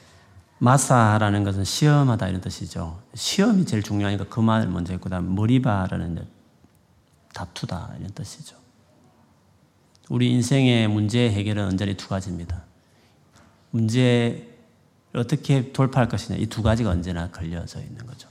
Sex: male